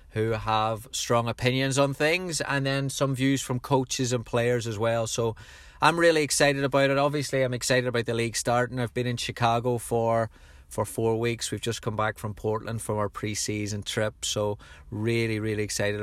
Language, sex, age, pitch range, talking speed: English, male, 30-49, 105-130 Hz, 190 wpm